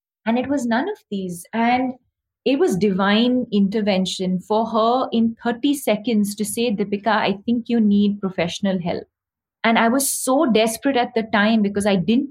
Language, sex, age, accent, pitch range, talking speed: English, female, 30-49, Indian, 195-230 Hz, 175 wpm